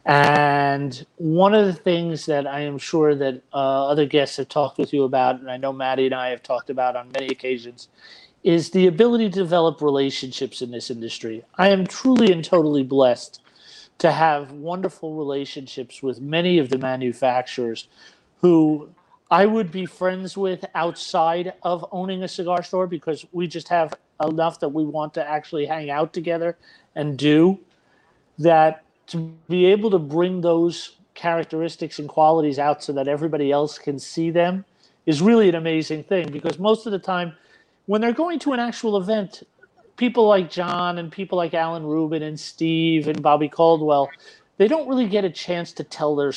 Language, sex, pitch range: English, male, 145-180 Hz